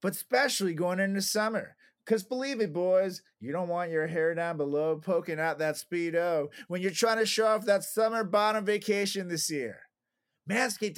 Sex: male